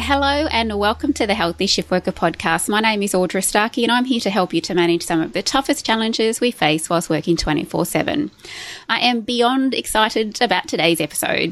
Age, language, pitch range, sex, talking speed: 20-39, English, 175-225 Hz, female, 210 wpm